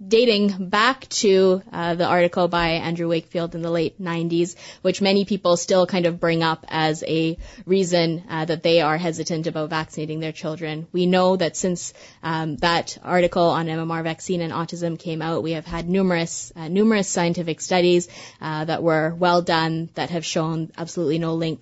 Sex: female